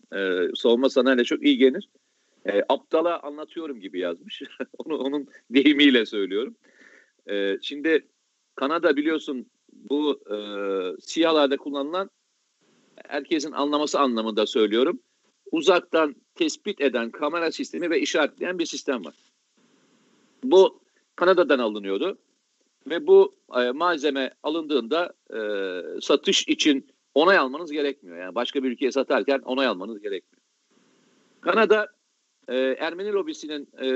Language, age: Turkish, 50-69